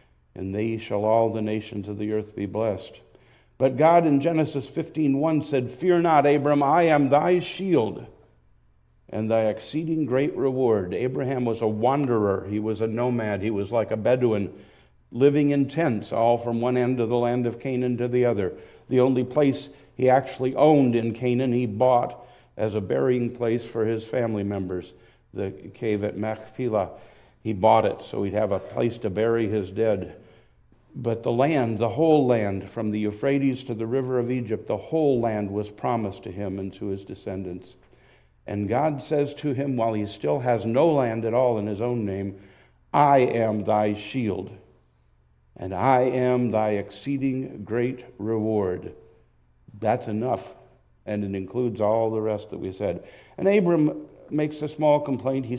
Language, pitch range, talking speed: English, 105-135 Hz, 175 wpm